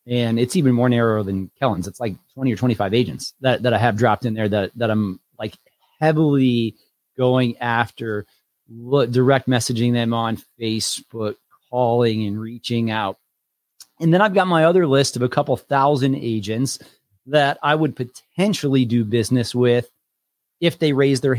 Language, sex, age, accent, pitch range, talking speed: English, male, 30-49, American, 115-140 Hz, 165 wpm